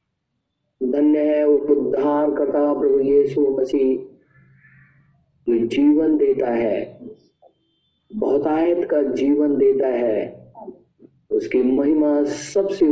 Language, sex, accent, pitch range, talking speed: Hindi, male, native, 135-165 Hz, 95 wpm